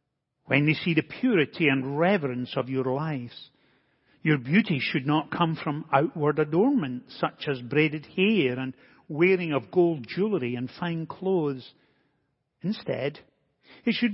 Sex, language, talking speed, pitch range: male, English, 140 wpm, 135-185 Hz